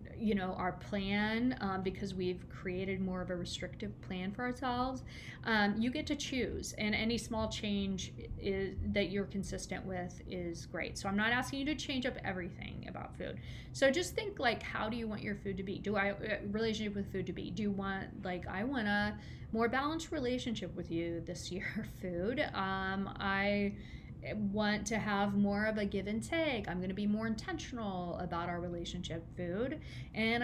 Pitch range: 190-250 Hz